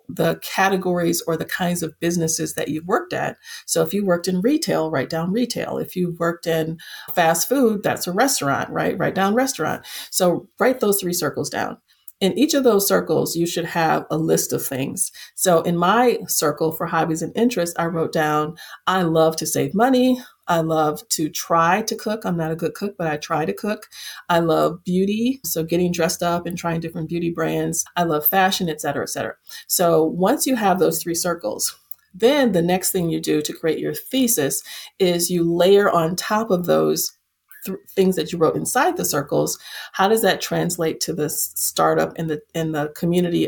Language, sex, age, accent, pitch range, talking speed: English, female, 40-59, American, 160-195 Hz, 200 wpm